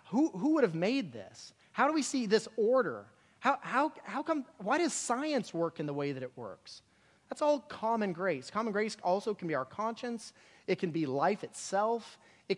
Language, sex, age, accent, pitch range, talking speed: English, male, 30-49, American, 155-215 Hz, 205 wpm